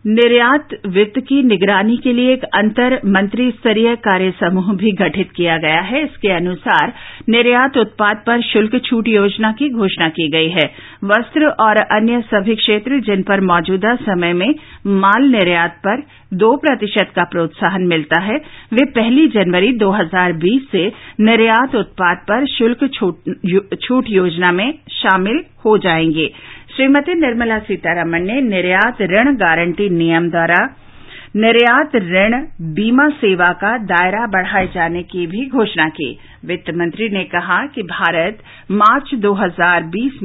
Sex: female